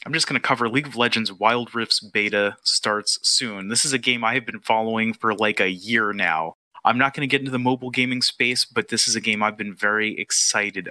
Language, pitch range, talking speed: English, 105-125 Hz, 250 wpm